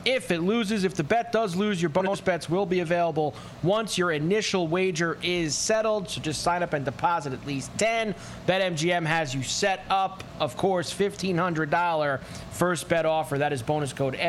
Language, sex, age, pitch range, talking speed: English, male, 20-39, 145-185 Hz, 185 wpm